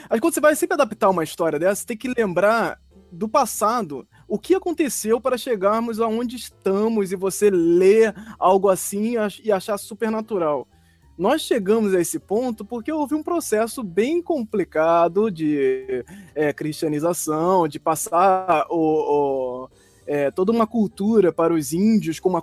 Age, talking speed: 20-39, 155 wpm